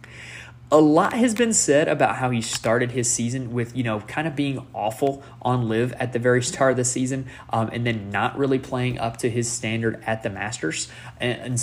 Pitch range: 115-135 Hz